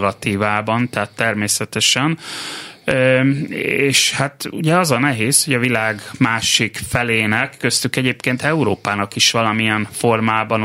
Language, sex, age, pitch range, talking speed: Hungarian, male, 30-49, 110-135 Hz, 105 wpm